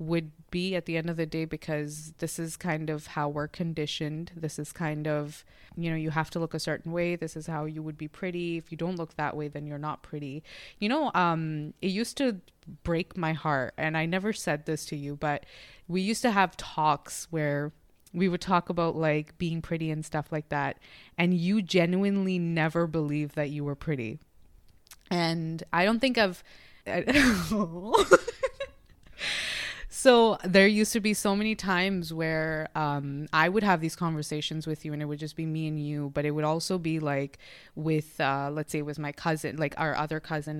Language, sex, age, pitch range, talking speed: English, female, 20-39, 155-180 Hz, 200 wpm